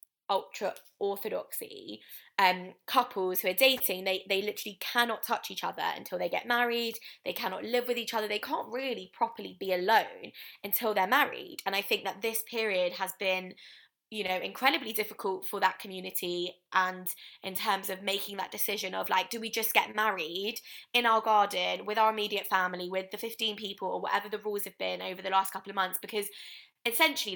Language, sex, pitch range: English, female, 190-230 Hz